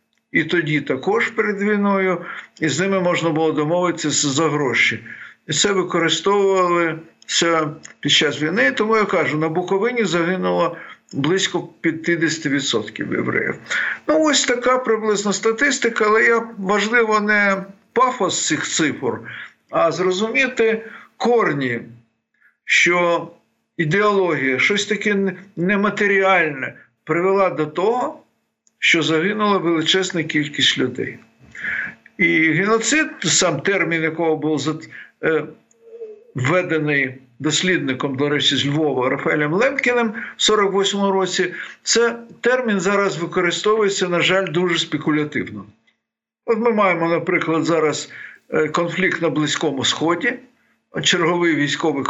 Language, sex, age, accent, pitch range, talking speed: Ukrainian, male, 60-79, native, 155-205 Hz, 105 wpm